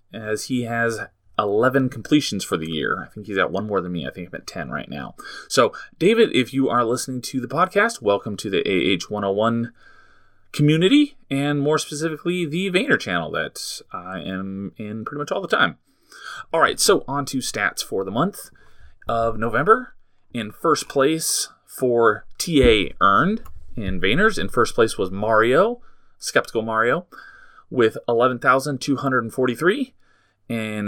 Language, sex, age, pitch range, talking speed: English, male, 30-49, 105-155 Hz, 160 wpm